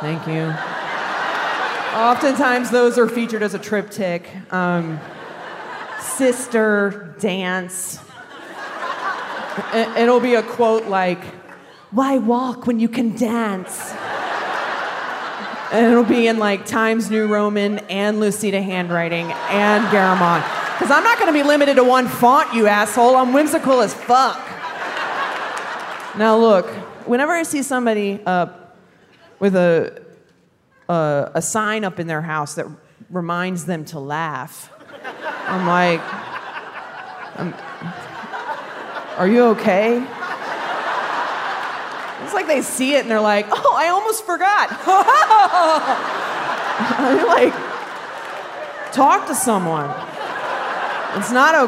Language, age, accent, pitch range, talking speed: English, 30-49, American, 185-250 Hz, 115 wpm